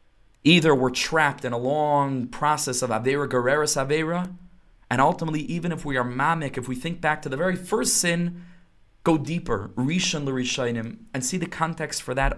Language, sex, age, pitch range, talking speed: English, male, 20-39, 120-160 Hz, 180 wpm